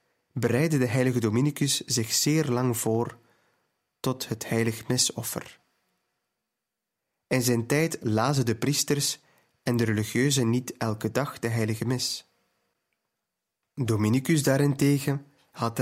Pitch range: 115-145 Hz